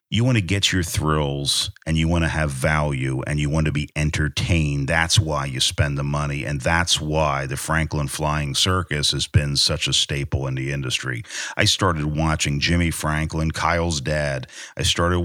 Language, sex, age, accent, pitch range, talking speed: English, male, 50-69, American, 75-90 Hz, 190 wpm